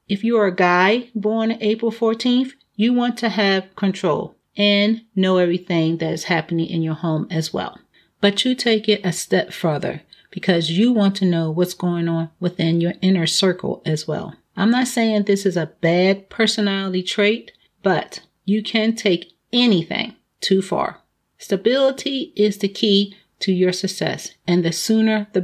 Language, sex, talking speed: English, female, 170 wpm